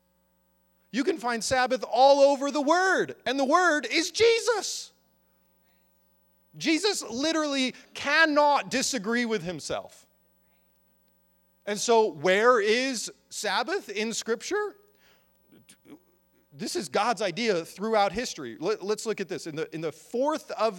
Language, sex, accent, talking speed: English, male, American, 120 wpm